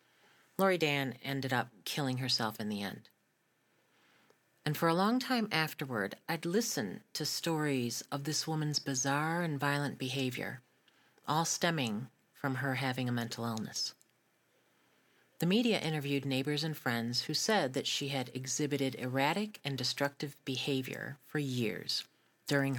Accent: American